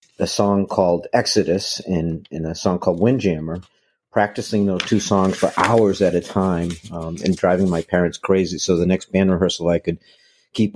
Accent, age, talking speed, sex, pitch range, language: American, 50-69, 185 wpm, male, 90-105 Hz, English